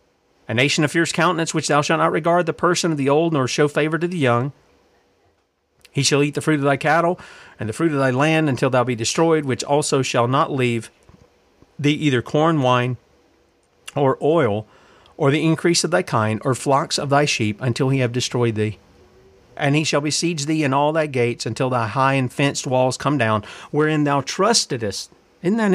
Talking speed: 205 wpm